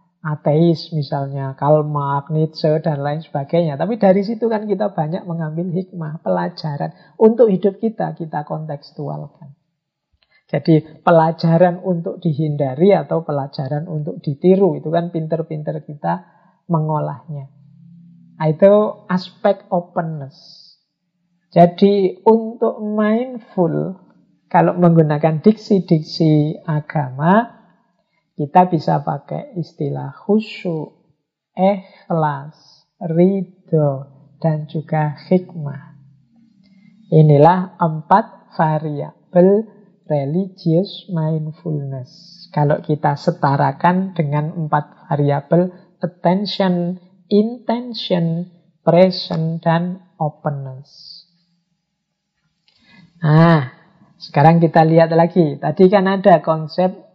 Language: Indonesian